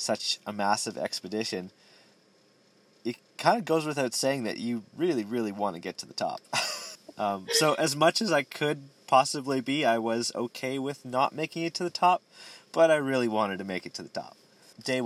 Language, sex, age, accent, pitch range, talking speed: English, male, 30-49, American, 95-120 Hz, 200 wpm